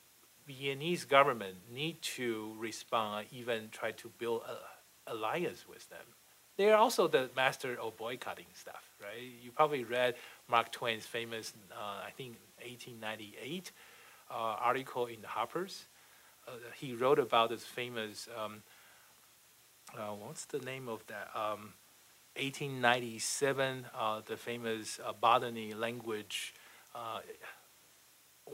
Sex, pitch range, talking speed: male, 110-130 Hz, 125 wpm